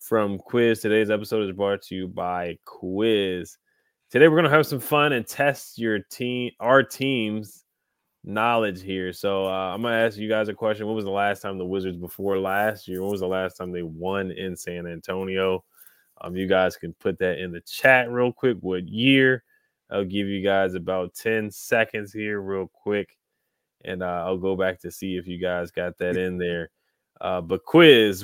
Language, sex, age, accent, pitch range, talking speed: English, male, 20-39, American, 95-115 Hz, 200 wpm